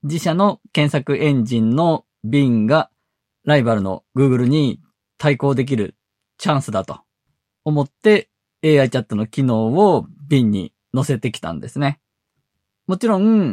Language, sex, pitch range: Japanese, male, 120-170 Hz